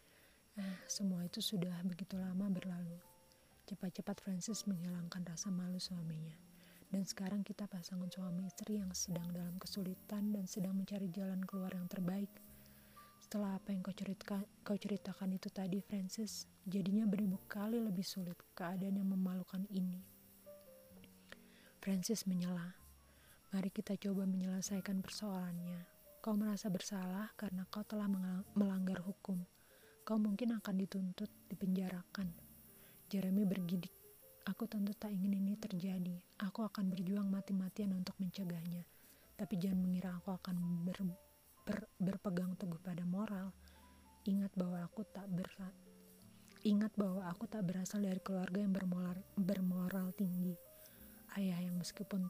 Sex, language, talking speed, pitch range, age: female, Indonesian, 130 wpm, 180-200 Hz, 30-49